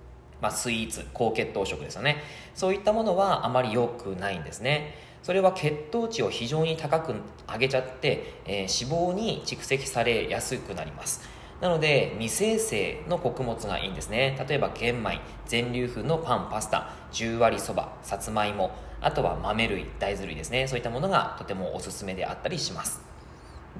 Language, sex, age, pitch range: Japanese, male, 20-39, 100-160 Hz